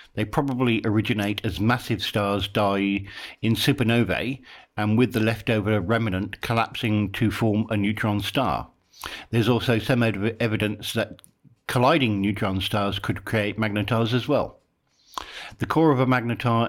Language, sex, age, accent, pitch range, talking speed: English, male, 60-79, British, 105-120 Hz, 135 wpm